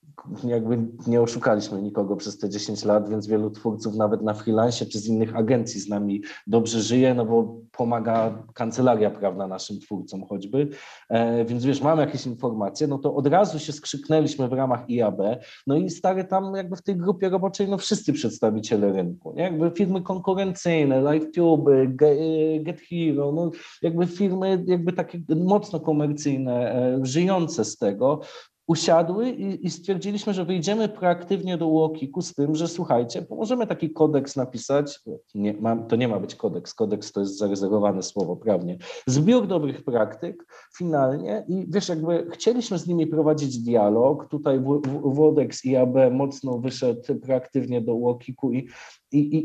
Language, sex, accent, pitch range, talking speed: Polish, male, native, 120-170 Hz, 150 wpm